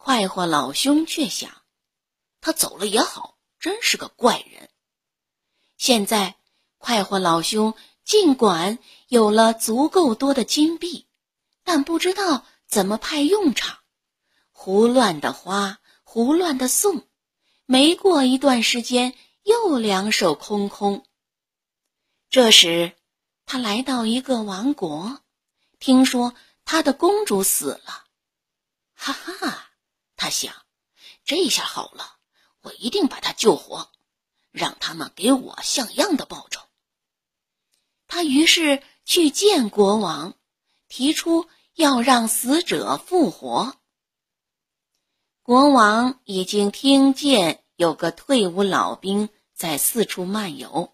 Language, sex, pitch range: Chinese, female, 210-305 Hz